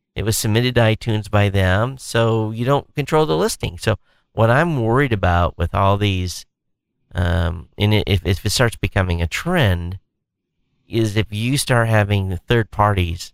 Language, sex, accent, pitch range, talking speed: English, male, American, 90-115 Hz, 170 wpm